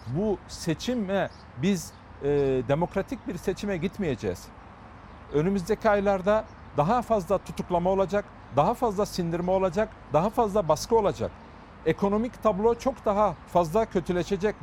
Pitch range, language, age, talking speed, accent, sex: 170-215 Hz, Turkish, 50-69, 115 wpm, native, male